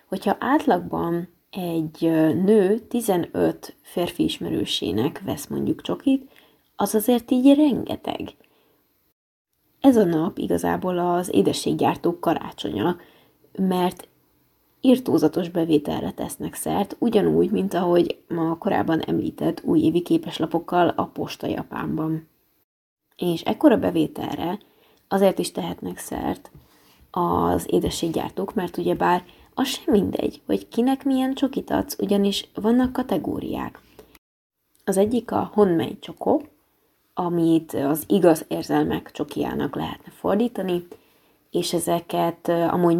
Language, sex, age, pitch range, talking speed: Hungarian, female, 20-39, 160-200 Hz, 105 wpm